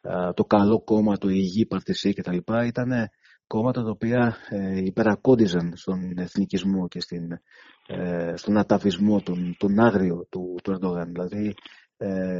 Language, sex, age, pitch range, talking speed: Greek, male, 30-49, 95-120 Hz, 145 wpm